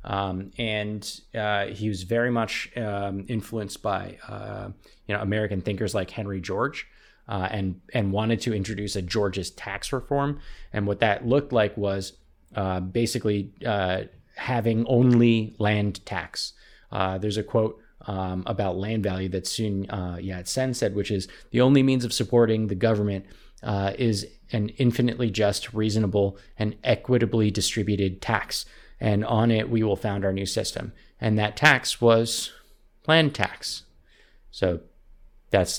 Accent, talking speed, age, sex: American, 150 wpm, 20-39, male